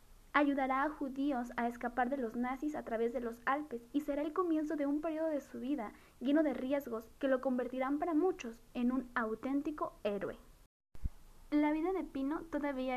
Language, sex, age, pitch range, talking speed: Spanish, female, 10-29, 240-295 Hz, 185 wpm